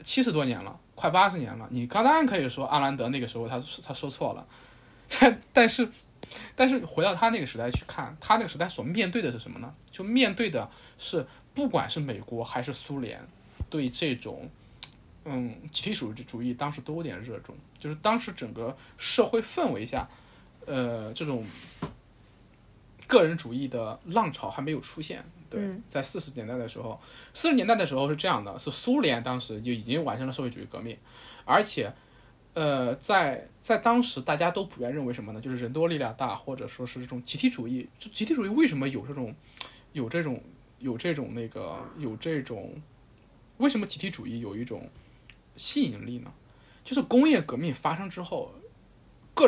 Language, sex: Chinese, male